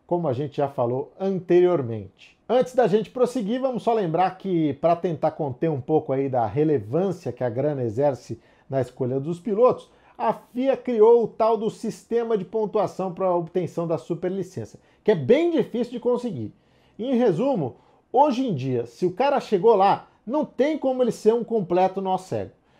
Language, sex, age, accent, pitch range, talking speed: Portuguese, male, 50-69, Brazilian, 145-225 Hz, 180 wpm